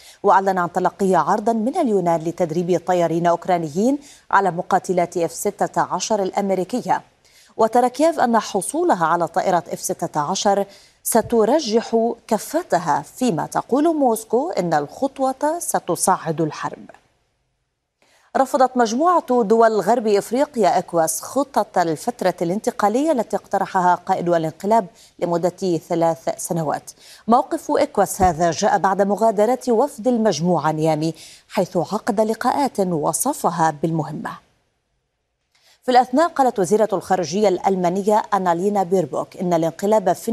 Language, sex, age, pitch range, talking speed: Arabic, female, 30-49, 170-230 Hz, 105 wpm